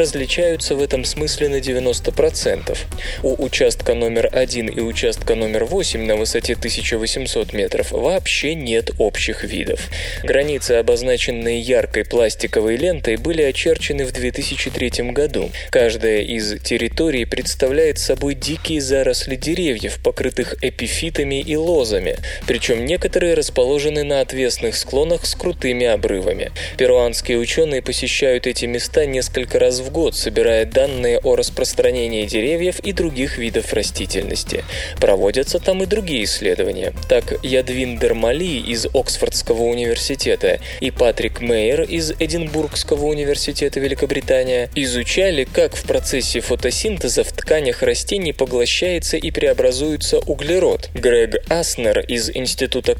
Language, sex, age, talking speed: Russian, male, 20-39, 120 wpm